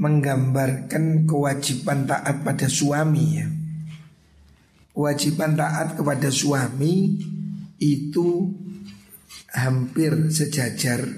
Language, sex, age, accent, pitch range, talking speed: Indonesian, male, 50-69, native, 135-165 Hz, 70 wpm